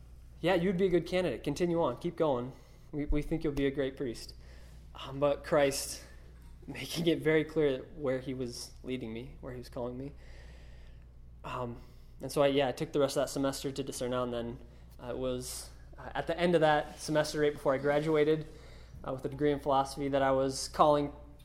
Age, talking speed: 20-39, 215 wpm